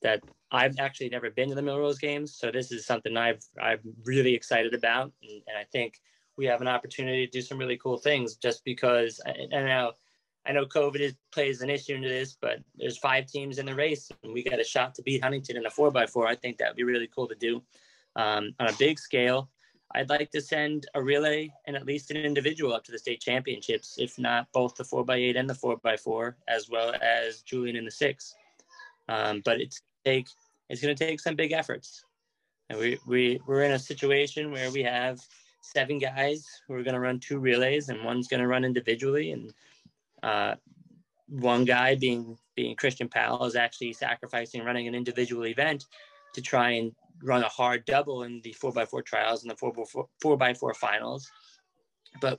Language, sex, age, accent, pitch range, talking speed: English, male, 20-39, American, 120-145 Hz, 220 wpm